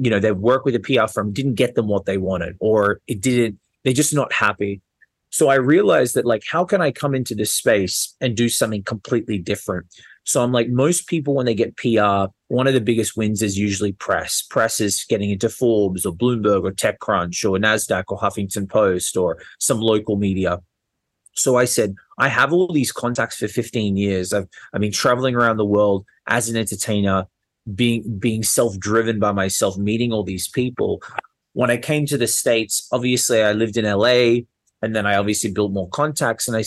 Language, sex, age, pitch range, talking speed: English, male, 20-39, 100-125 Hz, 200 wpm